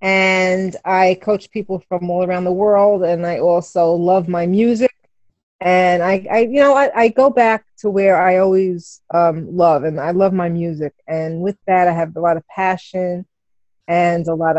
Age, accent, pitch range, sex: 30-49, American, 165-190 Hz, female